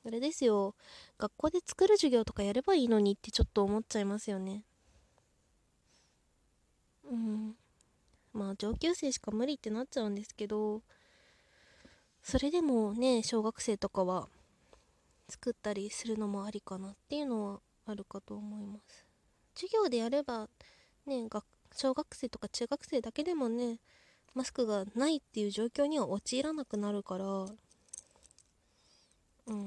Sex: female